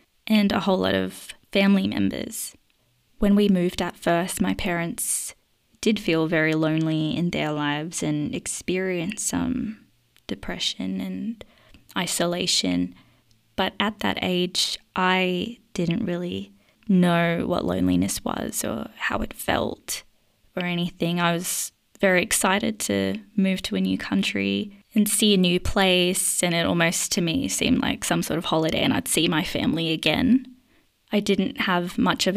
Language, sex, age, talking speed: English, female, 20-39, 150 wpm